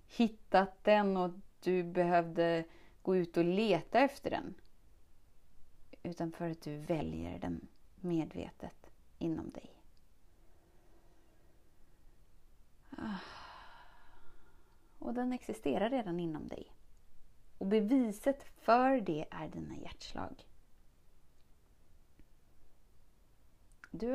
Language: Swedish